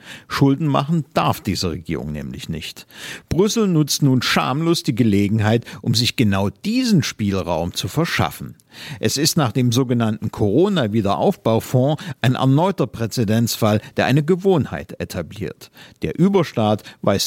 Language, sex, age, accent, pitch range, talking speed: German, male, 50-69, German, 100-150 Hz, 125 wpm